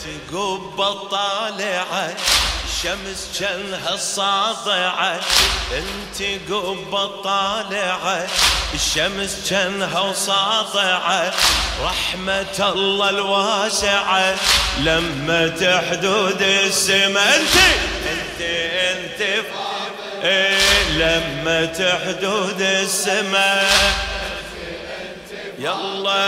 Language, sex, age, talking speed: Arabic, male, 30-49, 65 wpm